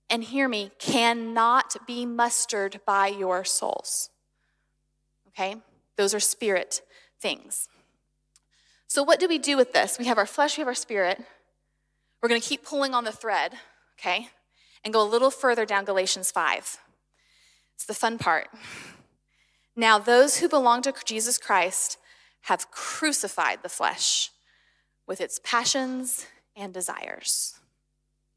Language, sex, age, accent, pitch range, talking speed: English, female, 20-39, American, 210-300 Hz, 140 wpm